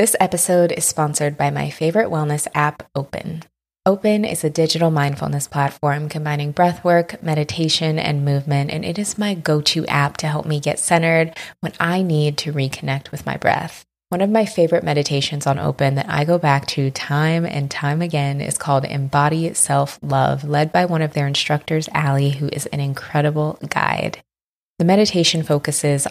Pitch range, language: 140-165 Hz, English